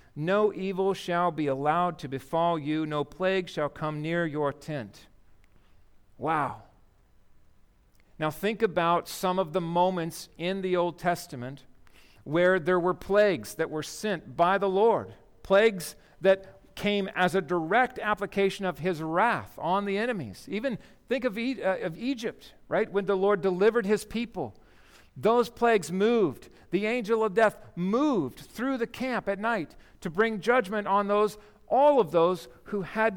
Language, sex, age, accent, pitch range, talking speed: English, male, 50-69, American, 170-210 Hz, 155 wpm